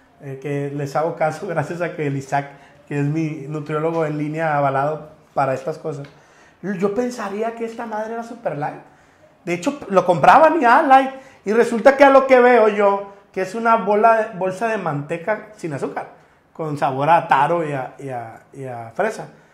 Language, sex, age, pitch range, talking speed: Spanish, male, 30-49, 160-230 Hz, 195 wpm